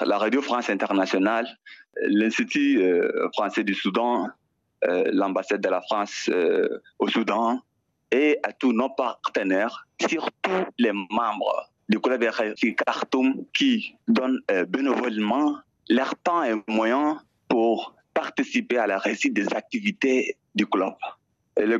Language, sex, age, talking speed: French, male, 30-49, 120 wpm